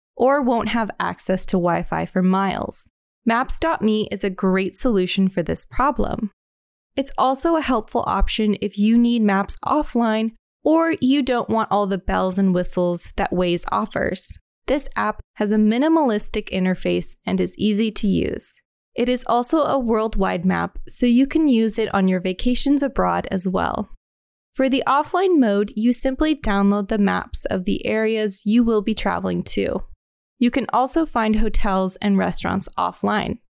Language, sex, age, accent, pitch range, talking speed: English, female, 20-39, American, 195-260 Hz, 165 wpm